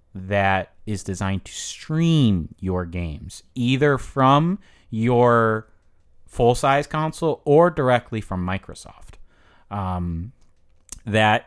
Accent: American